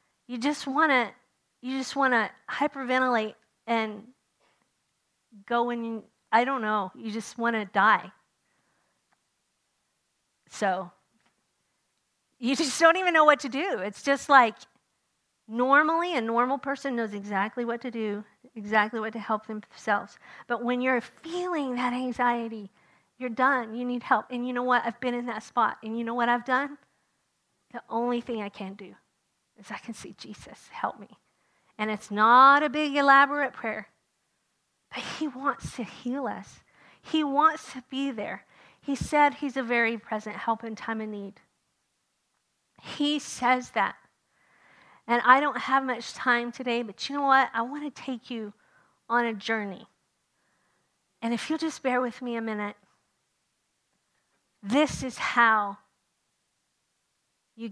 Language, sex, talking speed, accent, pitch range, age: English, female, 150 wpm, American, 220-270 Hz, 40-59